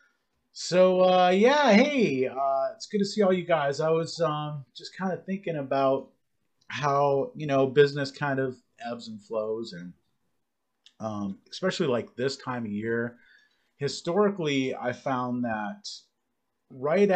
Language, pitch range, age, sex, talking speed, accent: English, 110-165 Hz, 30-49, male, 145 wpm, American